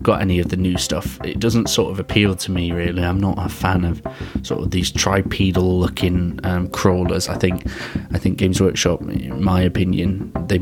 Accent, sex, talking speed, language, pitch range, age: British, male, 205 wpm, English, 90-100 Hz, 20-39